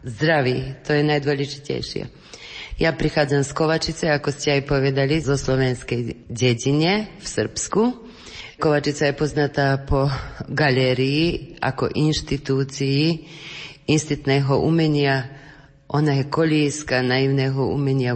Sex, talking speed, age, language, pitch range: female, 100 wpm, 30-49, Slovak, 135-150 Hz